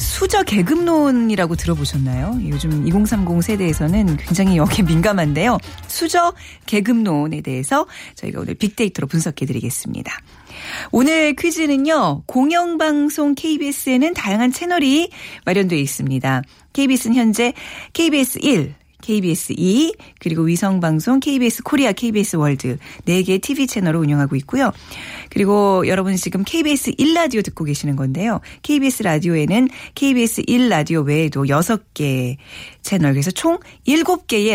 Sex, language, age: female, Korean, 40-59